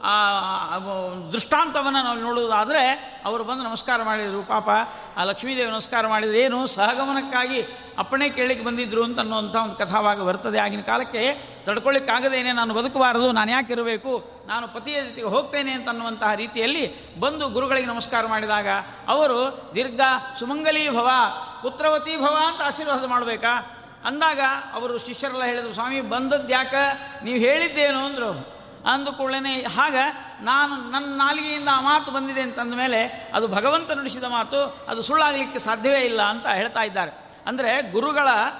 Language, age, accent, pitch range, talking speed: Kannada, 50-69, native, 230-270 Hz, 125 wpm